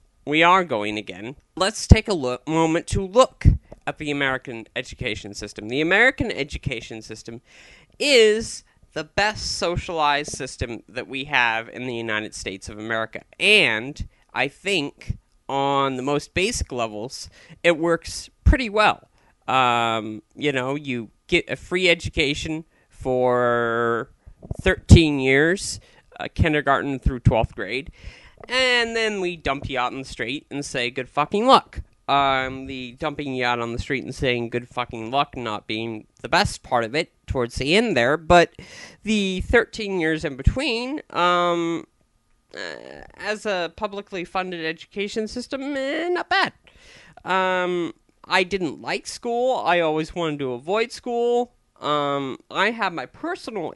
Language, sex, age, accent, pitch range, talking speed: English, male, 40-59, American, 120-185 Hz, 150 wpm